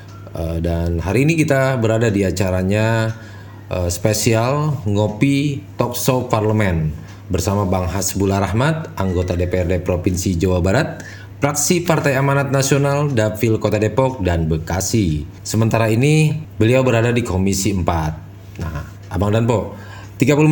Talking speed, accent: 125 wpm, native